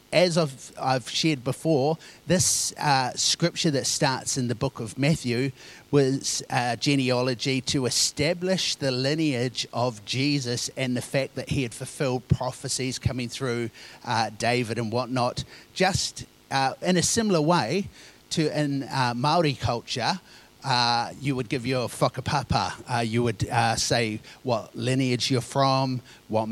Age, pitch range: 30-49, 120-145 Hz